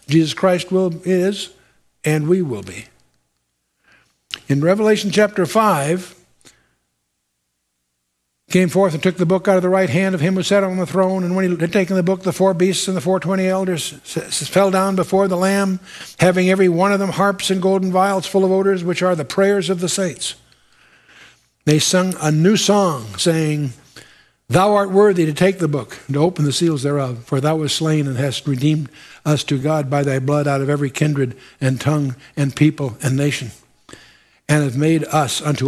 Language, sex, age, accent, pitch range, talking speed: English, male, 60-79, American, 140-190 Hz, 195 wpm